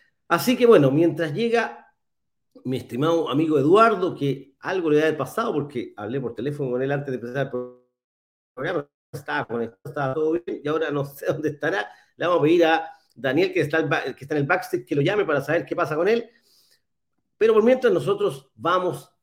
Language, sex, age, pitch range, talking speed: Spanish, male, 40-59, 145-210 Hz, 210 wpm